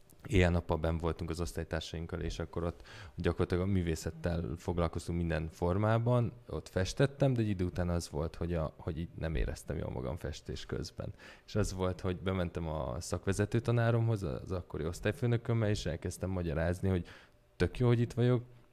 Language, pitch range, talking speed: Hungarian, 85-110 Hz, 160 wpm